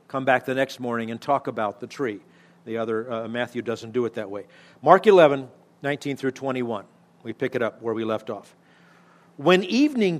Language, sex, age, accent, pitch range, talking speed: English, male, 50-69, American, 135-200 Hz, 200 wpm